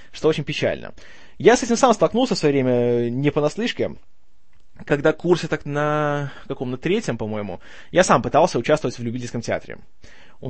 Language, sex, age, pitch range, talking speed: Russian, male, 20-39, 130-185 Hz, 165 wpm